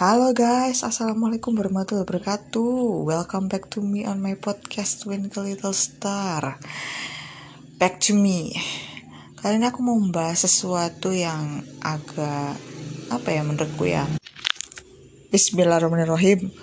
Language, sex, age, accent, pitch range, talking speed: Indonesian, female, 20-39, native, 170-230 Hz, 110 wpm